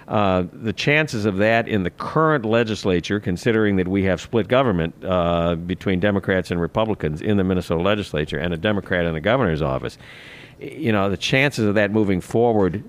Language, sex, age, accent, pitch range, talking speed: English, male, 50-69, American, 90-110 Hz, 180 wpm